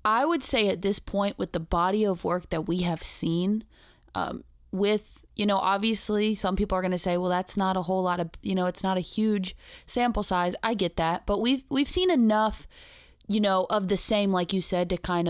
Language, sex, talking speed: English, female, 230 wpm